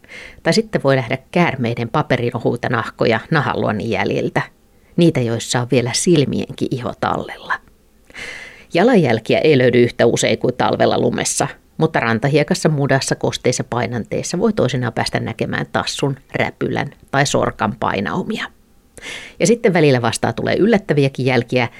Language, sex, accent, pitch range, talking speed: Finnish, female, native, 115-155 Hz, 125 wpm